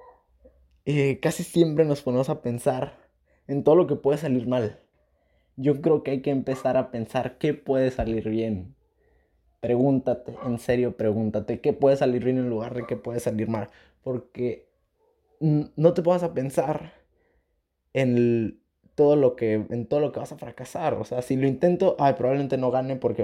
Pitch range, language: 115-140 Hz, Spanish